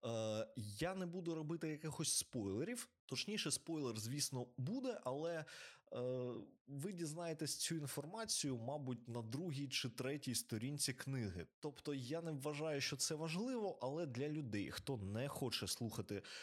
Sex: male